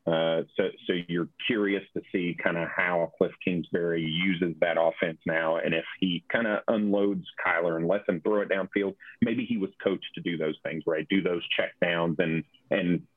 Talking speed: 205 wpm